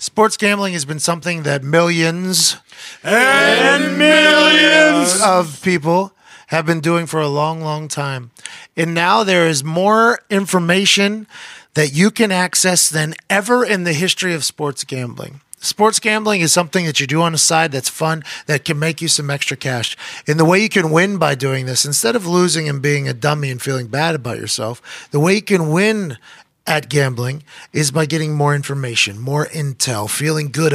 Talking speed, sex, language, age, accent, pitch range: 180 wpm, male, English, 30-49, American, 145-185 Hz